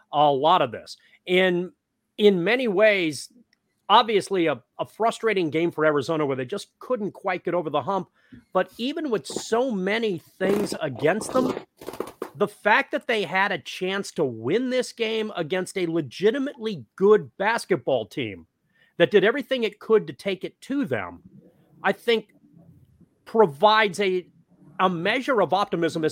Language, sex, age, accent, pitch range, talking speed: English, male, 40-59, American, 160-220 Hz, 155 wpm